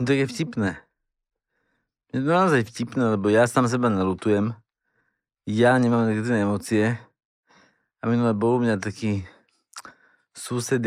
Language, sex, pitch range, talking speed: Slovak, male, 105-125 Hz, 140 wpm